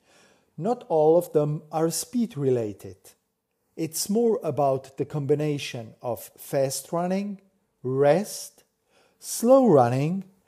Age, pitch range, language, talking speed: 40-59, 130-185 Hz, English, 105 wpm